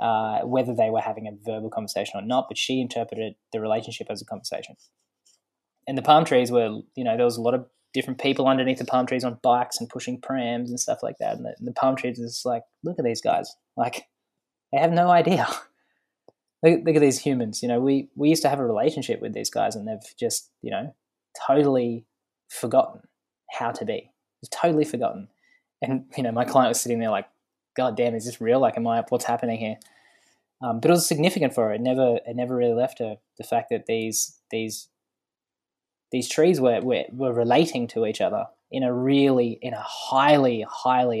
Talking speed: 215 wpm